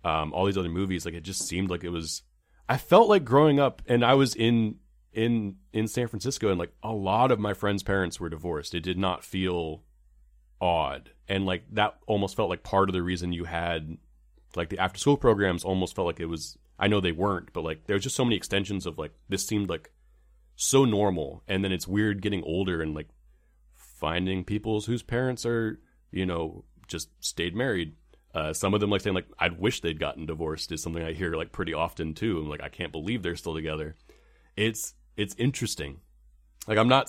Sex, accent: male, American